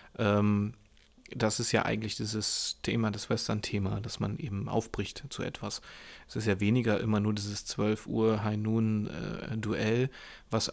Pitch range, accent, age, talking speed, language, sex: 105-120 Hz, German, 30-49, 155 wpm, German, male